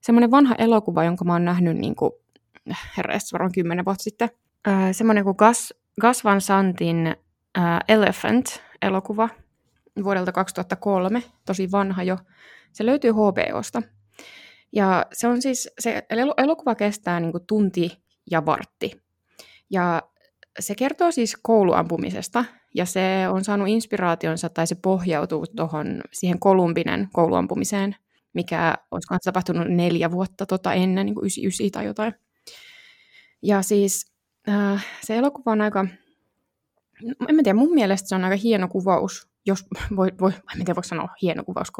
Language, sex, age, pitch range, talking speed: Finnish, female, 20-39, 175-225 Hz, 140 wpm